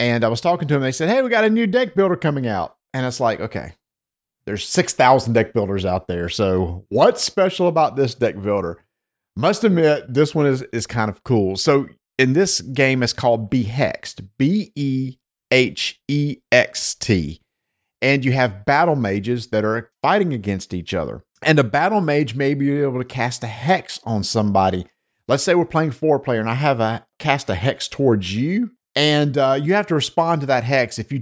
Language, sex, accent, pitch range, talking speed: English, male, American, 115-155 Hz, 195 wpm